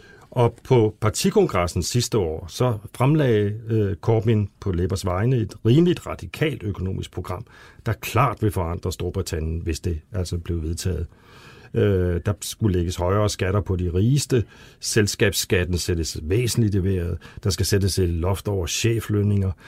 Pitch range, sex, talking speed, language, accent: 95-115 Hz, male, 145 wpm, Danish, native